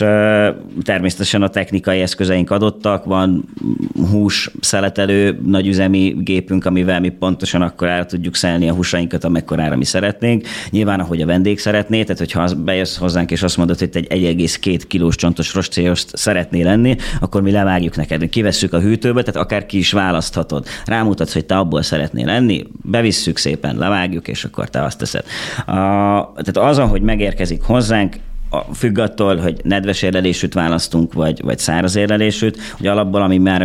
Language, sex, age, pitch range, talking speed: Hungarian, male, 30-49, 85-100 Hz, 155 wpm